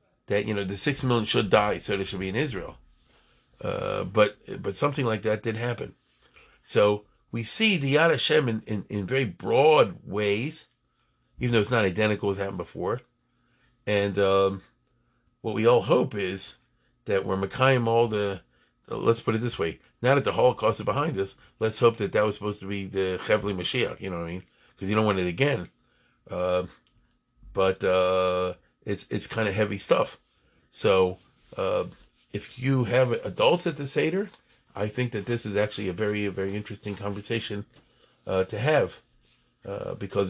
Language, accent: English, American